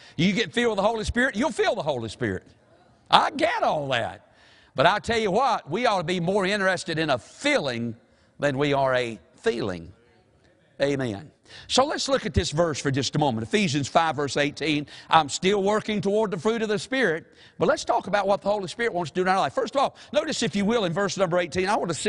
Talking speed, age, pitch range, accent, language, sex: 235 wpm, 50-69, 155-220 Hz, American, English, male